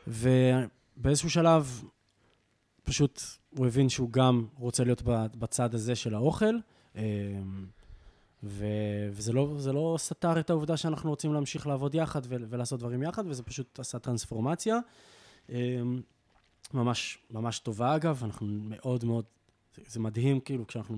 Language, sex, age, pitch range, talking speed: Hebrew, male, 20-39, 110-135 Hz, 120 wpm